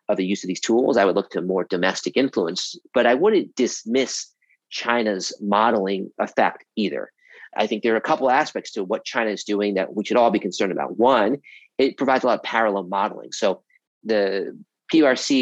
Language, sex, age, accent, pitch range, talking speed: English, male, 40-59, American, 95-120 Hz, 200 wpm